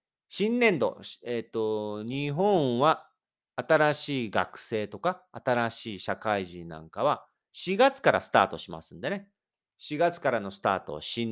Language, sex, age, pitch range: Japanese, male, 40-59, 95-145 Hz